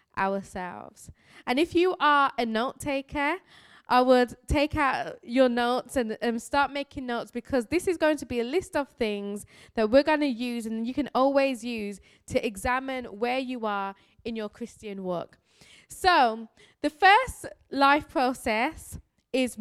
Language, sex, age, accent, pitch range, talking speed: English, female, 10-29, British, 225-310 Hz, 165 wpm